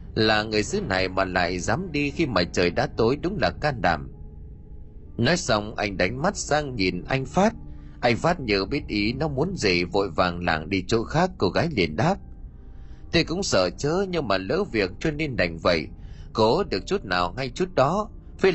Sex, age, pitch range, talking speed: male, 20-39, 90-150 Hz, 205 wpm